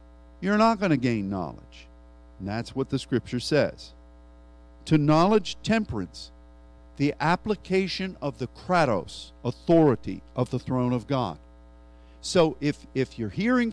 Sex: male